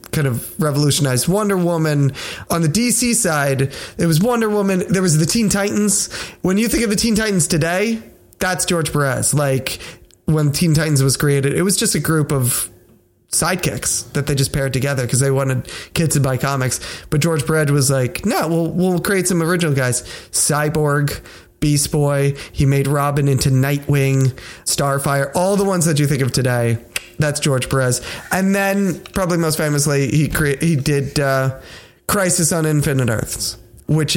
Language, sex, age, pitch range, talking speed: English, male, 20-39, 135-185 Hz, 175 wpm